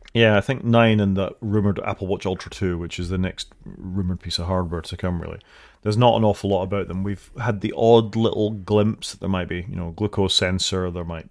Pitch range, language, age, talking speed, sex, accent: 90-110 Hz, English, 30-49, 240 wpm, male, British